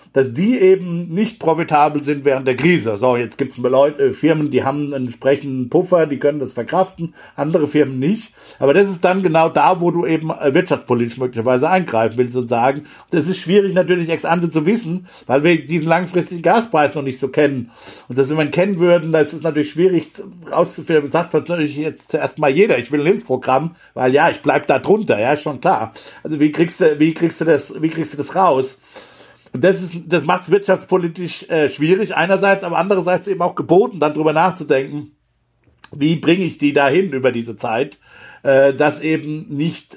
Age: 60-79